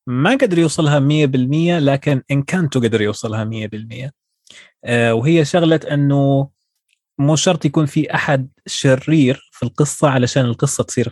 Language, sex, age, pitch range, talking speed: English, male, 20-39, 130-155 Hz, 140 wpm